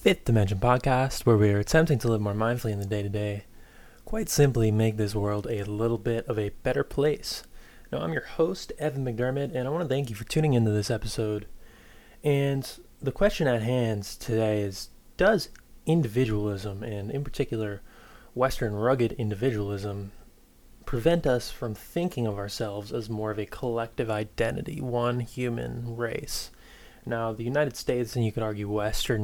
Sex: male